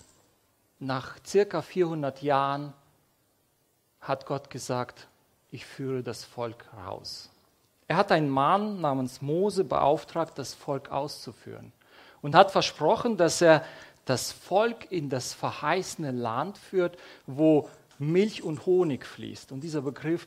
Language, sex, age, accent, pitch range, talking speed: English, male, 40-59, German, 135-170 Hz, 125 wpm